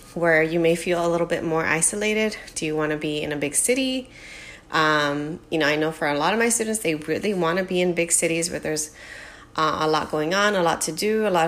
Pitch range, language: 150-195 Hz, English